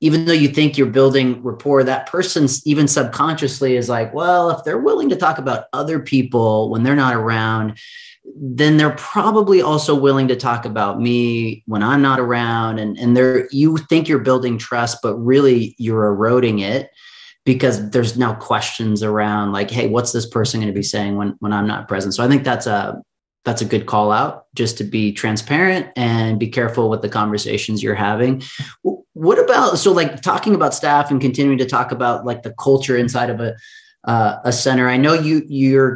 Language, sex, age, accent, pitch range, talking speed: English, male, 30-49, American, 115-140 Hz, 195 wpm